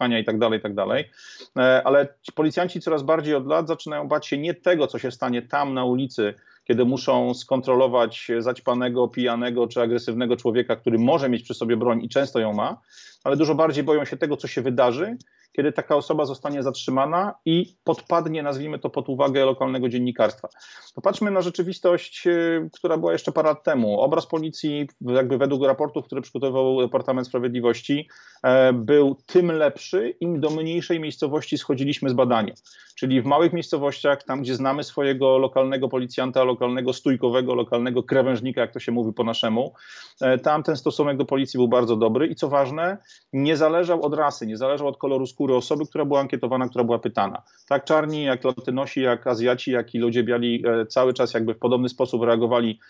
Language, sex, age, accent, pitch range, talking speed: Polish, male, 40-59, native, 125-150 Hz, 175 wpm